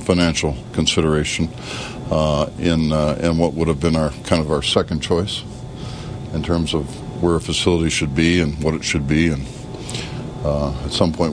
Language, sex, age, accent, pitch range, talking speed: English, male, 60-79, American, 80-105 Hz, 180 wpm